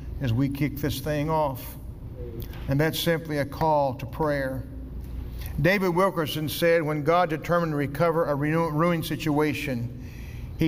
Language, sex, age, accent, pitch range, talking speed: English, male, 50-69, American, 140-195 Hz, 140 wpm